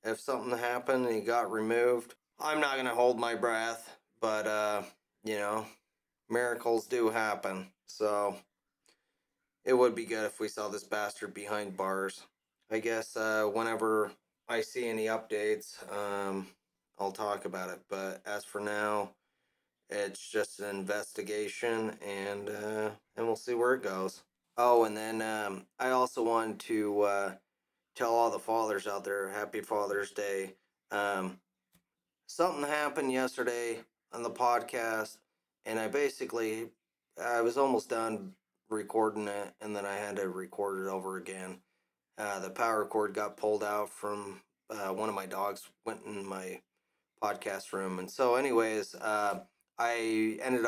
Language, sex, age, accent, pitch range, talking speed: English, male, 20-39, American, 100-115 Hz, 155 wpm